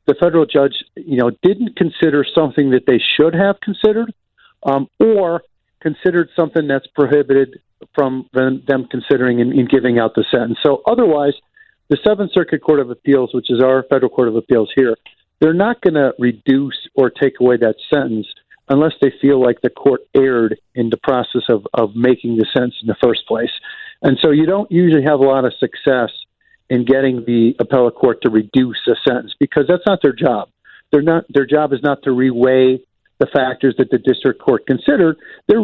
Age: 50-69